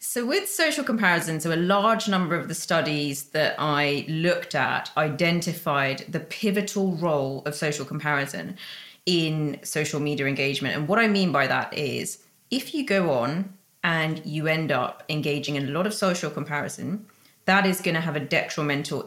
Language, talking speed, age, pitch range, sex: English, 175 wpm, 30-49, 150-190 Hz, female